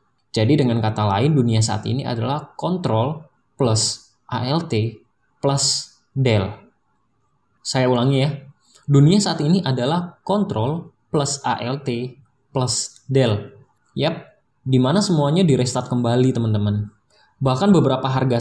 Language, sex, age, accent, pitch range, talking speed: Indonesian, male, 20-39, native, 115-145 Hz, 115 wpm